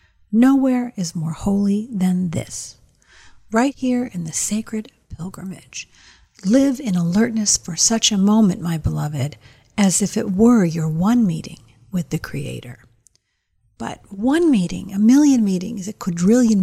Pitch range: 180-225 Hz